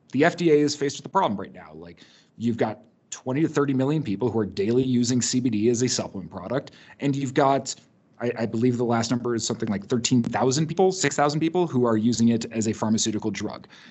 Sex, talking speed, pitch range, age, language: male, 215 wpm, 110-135 Hz, 30-49, English